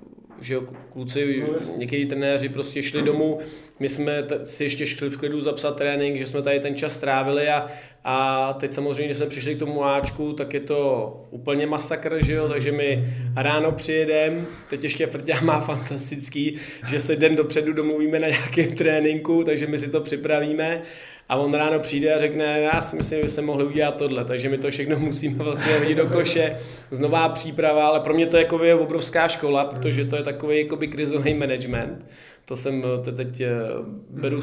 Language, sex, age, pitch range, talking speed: Czech, male, 20-39, 130-150 Hz, 190 wpm